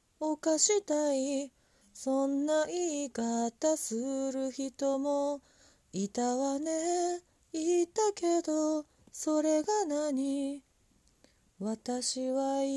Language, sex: Japanese, female